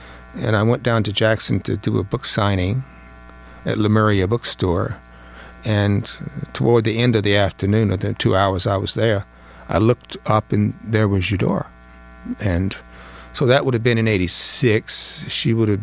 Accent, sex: American, male